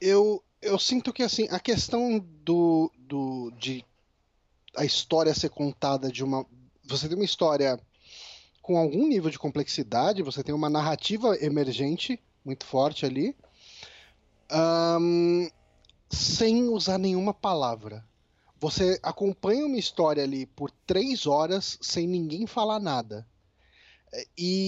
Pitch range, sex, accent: 135-205 Hz, male, Brazilian